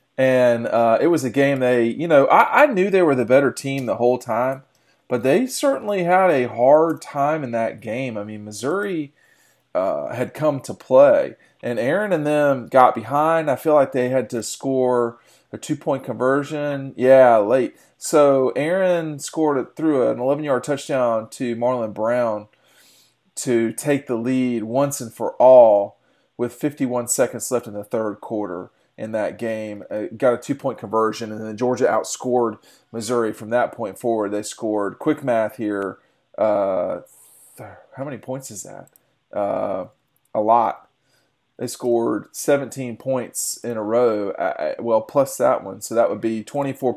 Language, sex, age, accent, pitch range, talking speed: English, male, 40-59, American, 115-140 Hz, 170 wpm